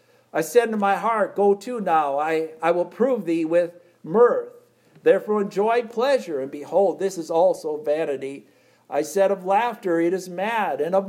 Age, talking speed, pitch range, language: 50-69, 180 wpm, 165-220 Hz, English